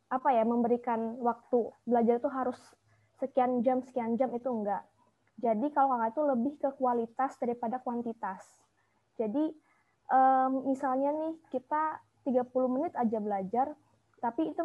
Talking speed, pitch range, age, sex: 130 wpm, 230-270 Hz, 20-39, female